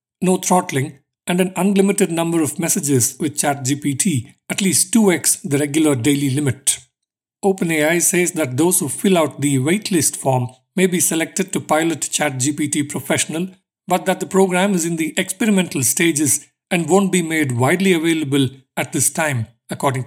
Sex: male